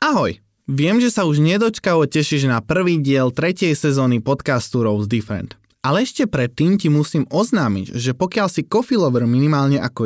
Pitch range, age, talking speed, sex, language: 120-170 Hz, 20-39, 165 wpm, male, Slovak